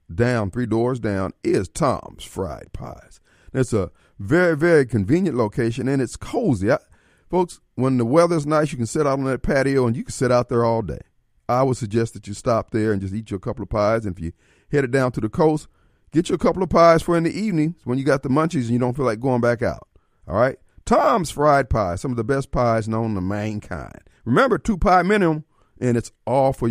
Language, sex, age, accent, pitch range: Japanese, male, 40-59, American, 115-180 Hz